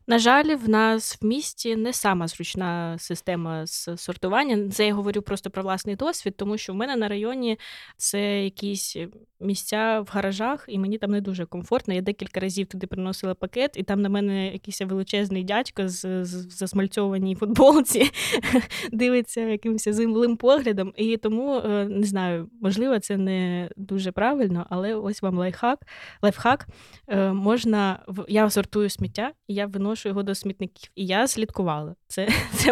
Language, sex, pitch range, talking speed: Ukrainian, female, 190-225 Hz, 160 wpm